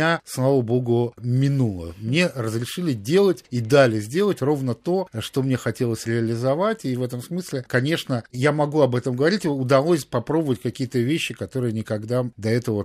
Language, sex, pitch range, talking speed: Russian, male, 115-135 Hz, 160 wpm